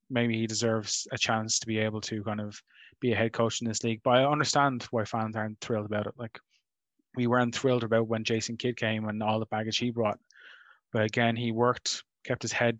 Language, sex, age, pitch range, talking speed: English, male, 20-39, 110-120 Hz, 230 wpm